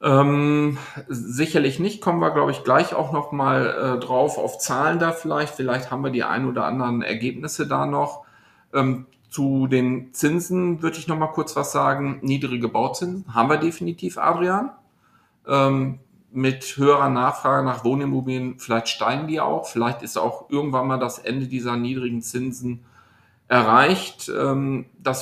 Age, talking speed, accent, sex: 40-59, 160 wpm, German, male